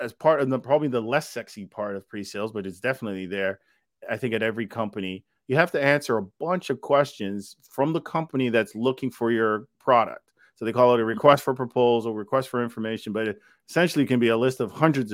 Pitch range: 110-140 Hz